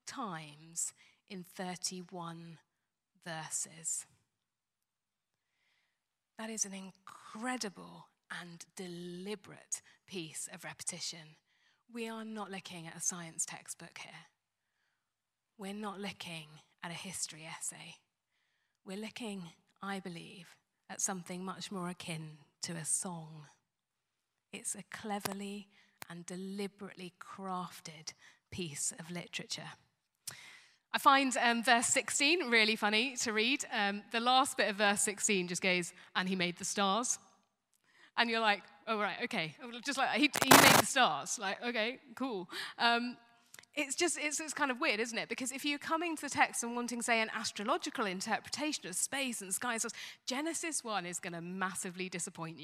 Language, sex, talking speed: English, female, 140 wpm